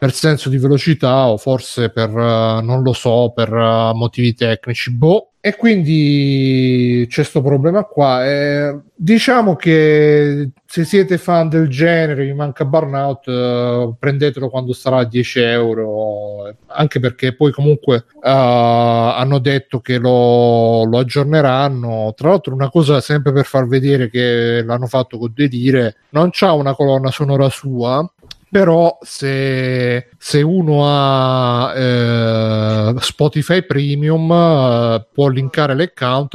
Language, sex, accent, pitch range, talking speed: Italian, male, native, 120-150 Hz, 135 wpm